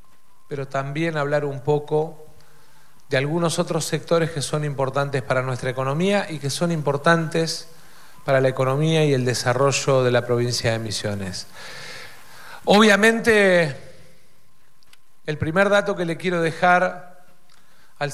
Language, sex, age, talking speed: Spanish, male, 40-59, 130 wpm